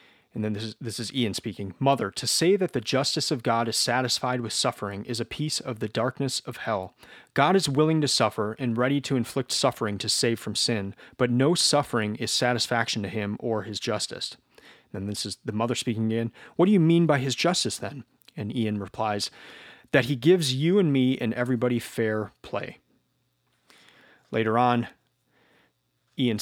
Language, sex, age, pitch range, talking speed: English, male, 30-49, 110-135 Hz, 190 wpm